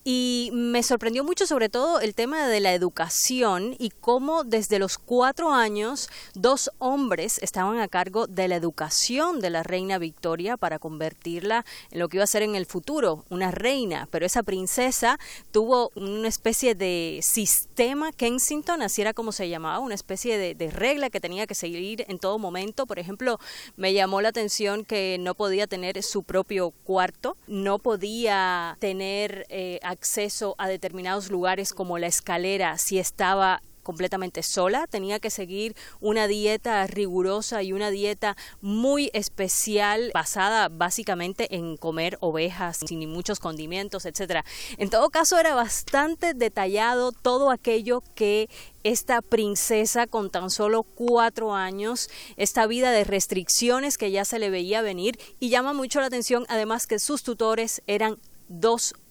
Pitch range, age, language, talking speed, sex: 185-235 Hz, 30-49, Spanish, 155 wpm, female